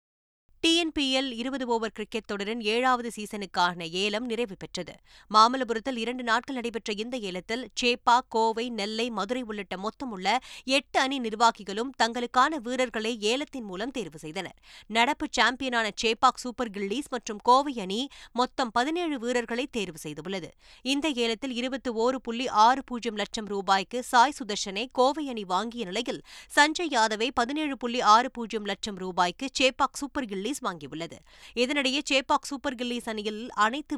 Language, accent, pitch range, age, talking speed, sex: Tamil, native, 175-245 Hz, 20-39, 35 wpm, female